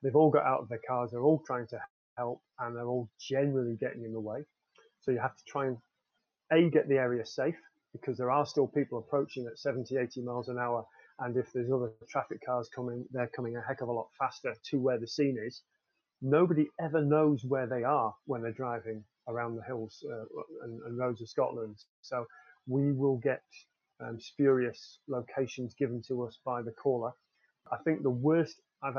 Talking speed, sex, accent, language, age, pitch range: 205 wpm, male, British, English, 30-49, 120-145 Hz